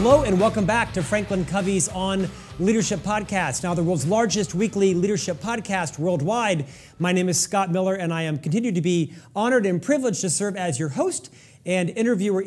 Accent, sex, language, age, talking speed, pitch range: American, male, English, 40-59, 190 wpm, 170-225 Hz